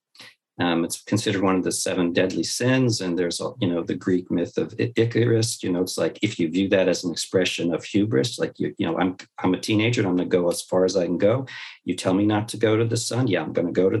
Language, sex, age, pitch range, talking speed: English, male, 50-69, 90-120 Hz, 285 wpm